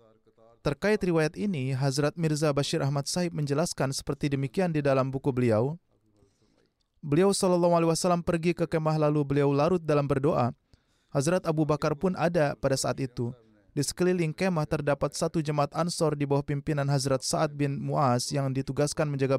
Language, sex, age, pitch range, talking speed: Indonesian, male, 30-49, 135-165 Hz, 160 wpm